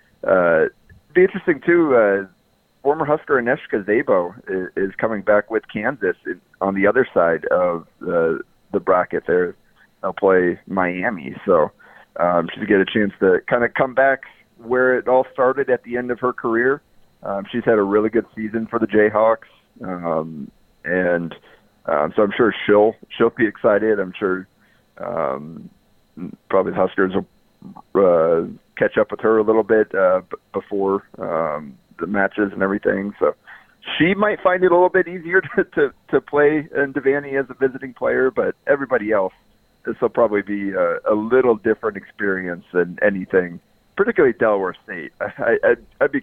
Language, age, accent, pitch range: English, 40-59, American, 95-135 Hz